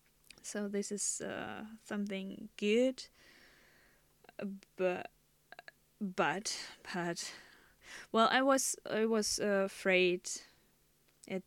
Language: English